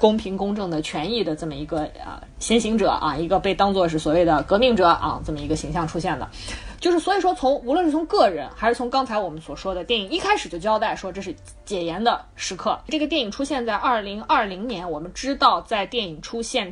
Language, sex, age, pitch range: Chinese, female, 20-39, 180-245 Hz